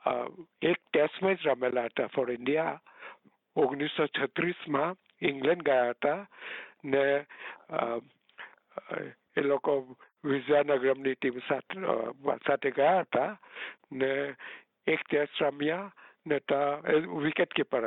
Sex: male